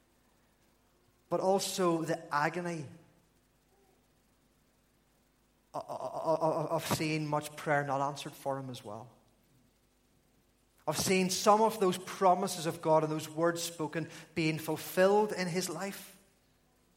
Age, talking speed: 30-49, 110 wpm